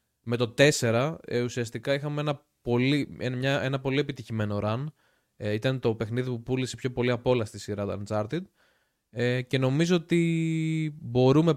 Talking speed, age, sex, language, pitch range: 155 wpm, 20-39, male, Greek, 115-150 Hz